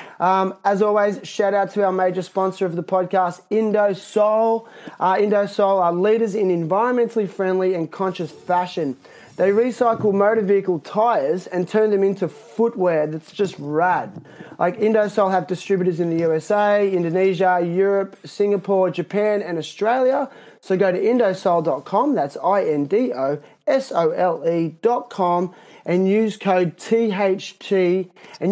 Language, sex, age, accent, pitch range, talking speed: English, male, 20-39, Australian, 180-210 Hz, 125 wpm